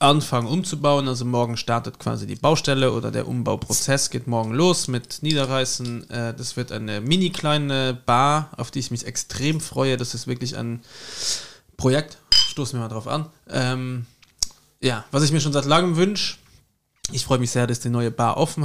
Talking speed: 180 wpm